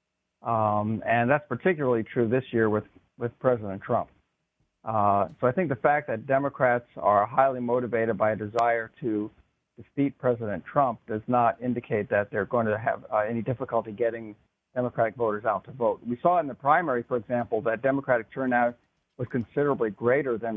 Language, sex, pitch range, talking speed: English, male, 110-130 Hz, 175 wpm